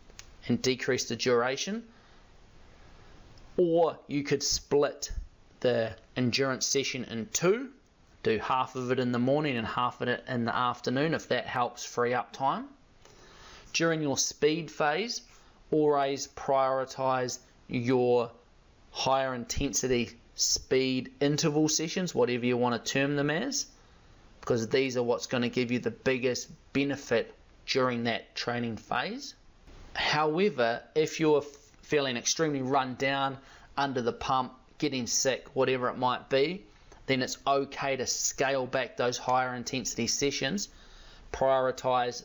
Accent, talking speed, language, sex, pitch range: Australian, 135 wpm, English, male, 120-145 Hz